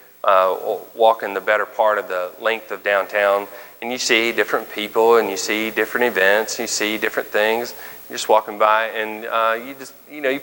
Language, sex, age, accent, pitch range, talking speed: English, male, 30-49, American, 105-130 Hz, 205 wpm